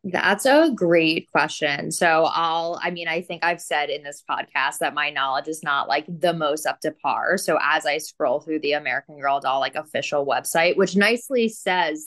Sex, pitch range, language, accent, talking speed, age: female, 155-205 Hz, English, American, 205 wpm, 20-39